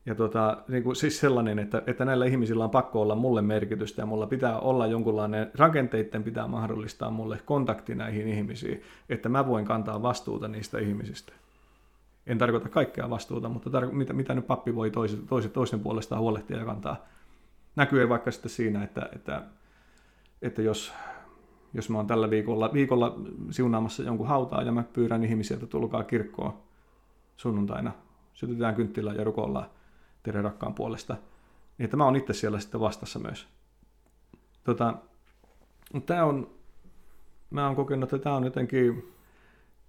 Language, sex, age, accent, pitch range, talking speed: Finnish, male, 30-49, native, 110-130 Hz, 155 wpm